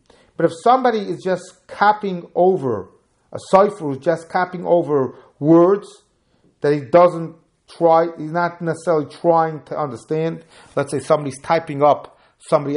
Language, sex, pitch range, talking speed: English, male, 145-175 Hz, 140 wpm